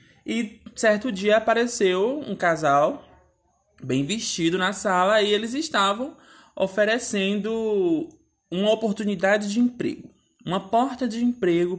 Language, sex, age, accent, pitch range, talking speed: Portuguese, male, 20-39, Brazilian, 165-220 Hz, 110 wpm